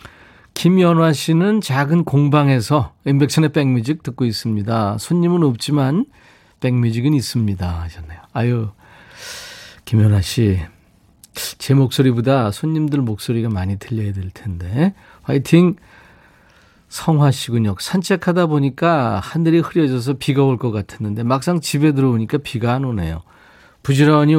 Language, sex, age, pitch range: Korean, male, 40-59, 110-155 Hz